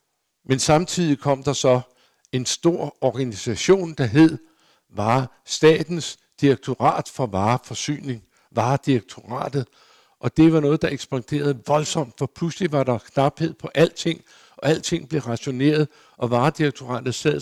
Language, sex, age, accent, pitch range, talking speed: Danish, male, 60-79, native, 120-155 Hz, 125 wpm